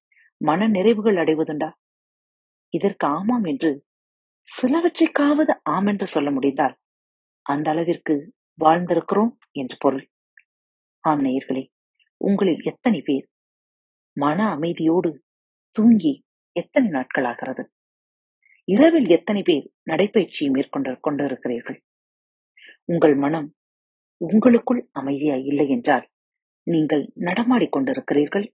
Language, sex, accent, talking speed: Tamil, female, native, 85 wpm